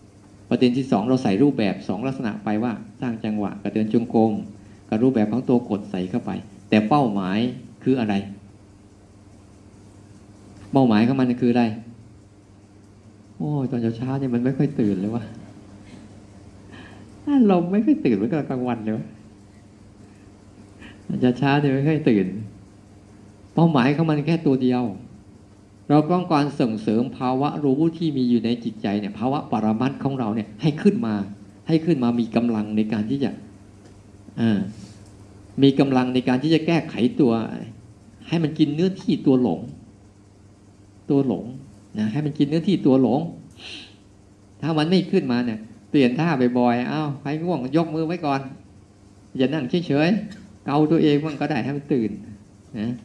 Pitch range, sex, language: 100-135 Hz, male, Thai